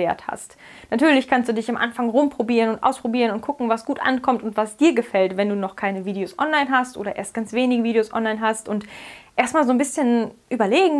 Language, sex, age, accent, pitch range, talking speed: German, female, 10-29, German, 210-255 Hz, 215 wpm